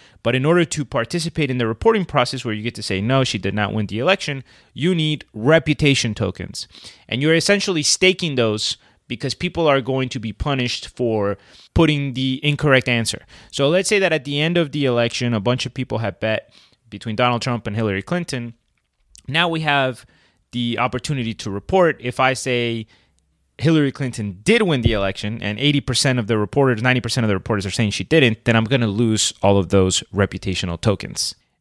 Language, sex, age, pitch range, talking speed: English, male, 30-49, 105-145 Hz, 195 wpm